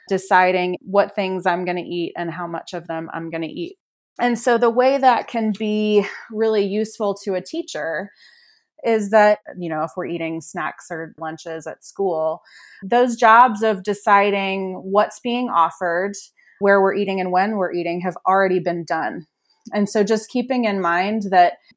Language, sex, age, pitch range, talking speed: English, female, 30-49, 175-215 Hz, 180 wpm